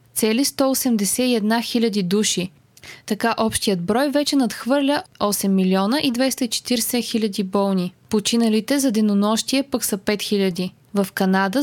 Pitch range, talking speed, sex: 200-250 Hz, 125 wpm, female